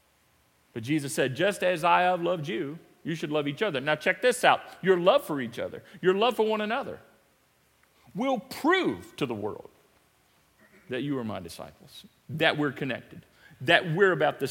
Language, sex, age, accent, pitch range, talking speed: English, male, 40-59, American, 180-280 Hz, 185 wpm